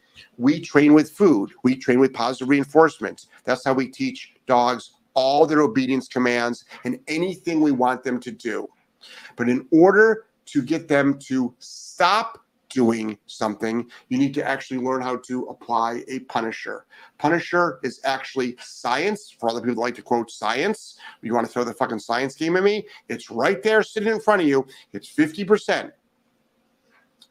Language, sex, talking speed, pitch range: English, male, 170 wpm, 130-170 Hz